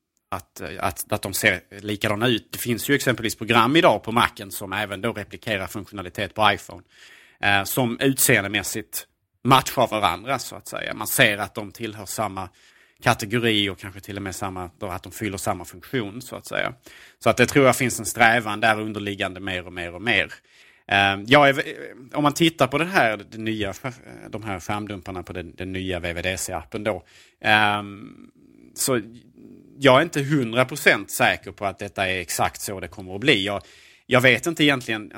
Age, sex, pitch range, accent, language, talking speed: 30-49, male, 100-125 Hz, Norwegian, Swedish, 190 wpm